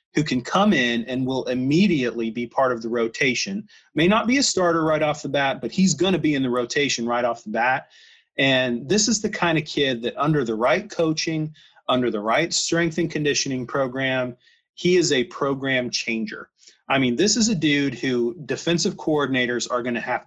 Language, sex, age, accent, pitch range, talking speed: English, male, 30-49, American, 125-165 Hz, 205 wpm